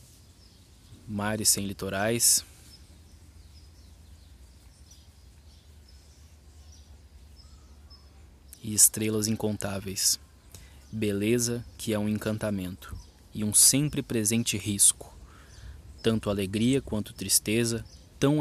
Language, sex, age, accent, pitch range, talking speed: Portuguese, male, 20-39, Brazilian, 85-110 Hz, 70 wpm